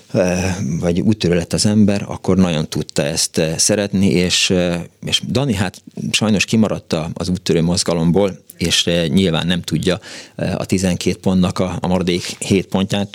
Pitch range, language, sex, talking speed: 85-110 Hz, Hungarian, male, 140 wpm